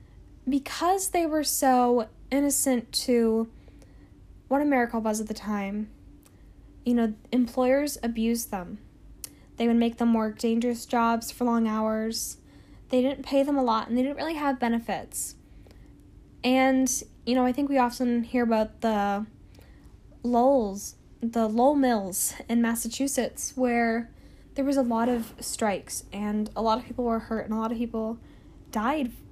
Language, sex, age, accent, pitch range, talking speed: English, female, 10-29, American, 225-265 Hz, 155 wpm